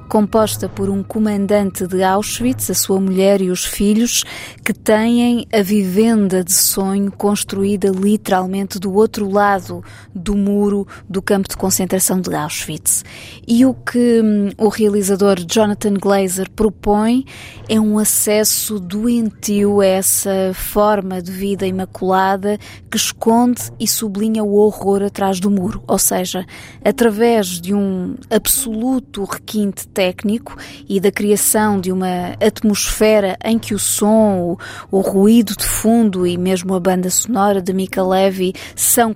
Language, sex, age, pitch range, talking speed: Portuguese, female, 20-39, 190-215 Hz, 135 wpm